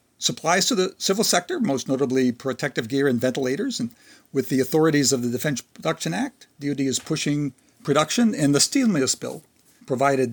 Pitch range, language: 125-145 Hz, English